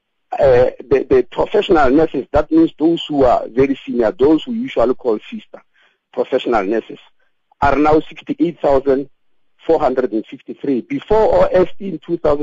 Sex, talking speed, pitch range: male, 125 wpm, 140-205 Hz